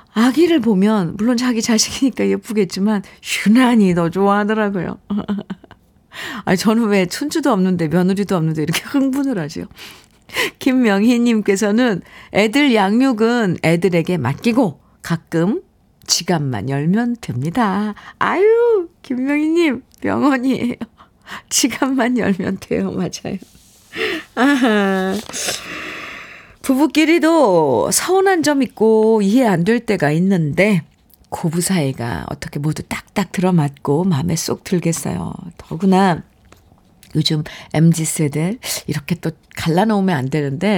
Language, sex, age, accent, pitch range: Korean, female, 50-69, native, 170-235 Hz